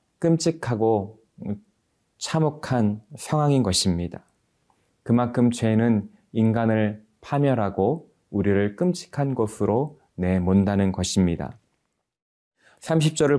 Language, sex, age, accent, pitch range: Korean, male, 20-39, native, 105-140 Hz